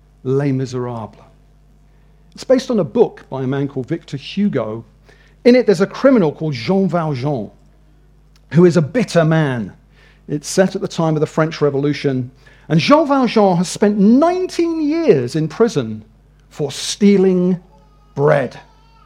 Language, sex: English, male